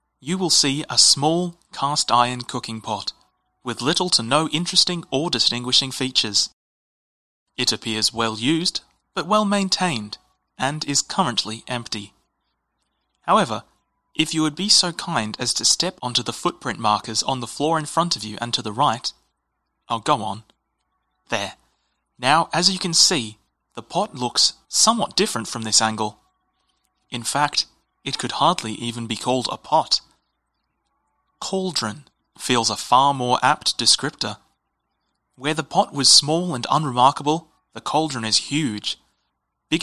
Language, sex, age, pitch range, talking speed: English, male, 30-49, 110-155 Hz, 150 wpm